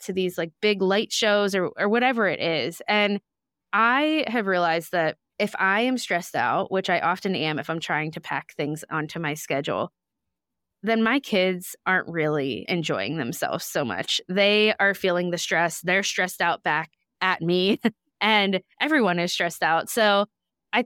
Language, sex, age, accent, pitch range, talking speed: English, female, 20-39, American, 160-205 Hz, 175 wpm